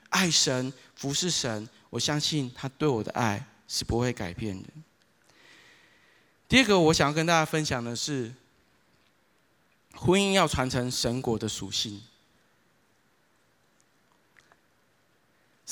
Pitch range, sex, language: 120-165 Hz, male, Chinese